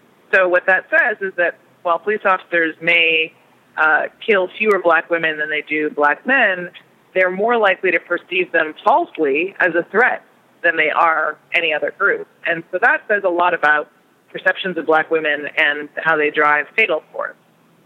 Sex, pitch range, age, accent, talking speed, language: female, 160-200 Hz, 30-49, American, 180 wpm, English